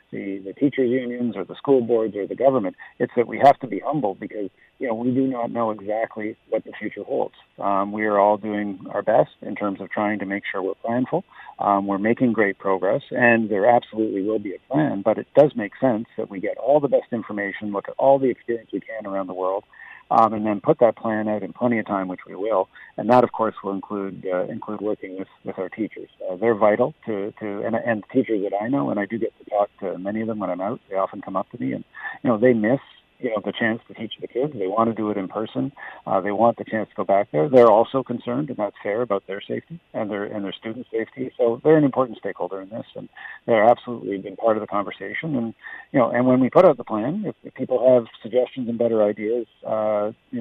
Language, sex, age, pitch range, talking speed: English, male, 50-69, 100-120 Hz, 255 wpm